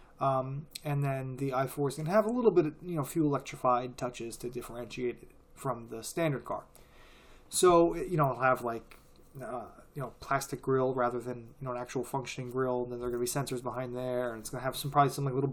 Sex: male